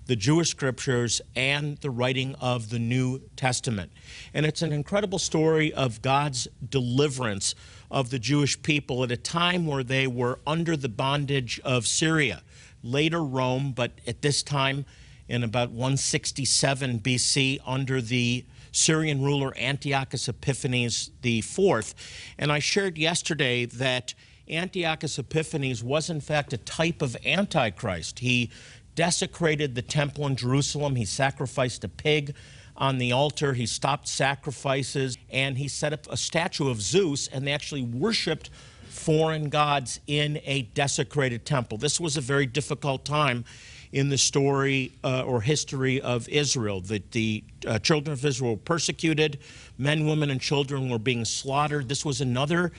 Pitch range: 125-150 Hz